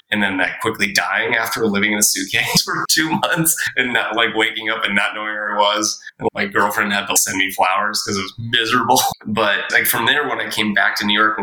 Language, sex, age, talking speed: English, male, 20-39, 245 wpm